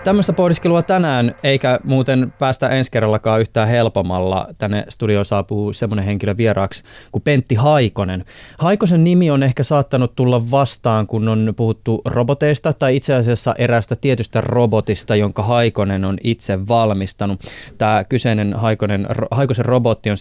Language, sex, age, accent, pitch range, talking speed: Finnish, male, 20-39, native, 105-125 Hz, 140 wpm